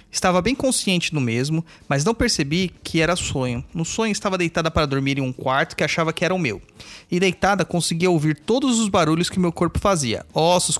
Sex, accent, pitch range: male, Brazilian, 150-190 Hz